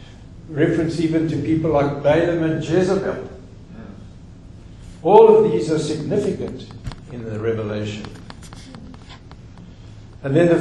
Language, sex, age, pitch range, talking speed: English, male, 60-79, 110-145 Hz, 105 wpm